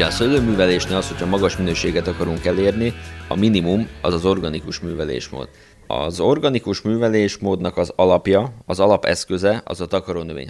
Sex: male